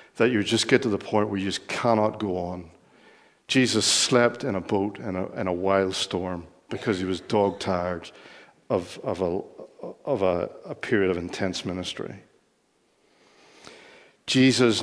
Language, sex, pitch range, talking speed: English, male, 95-110 Hz, 160 wpm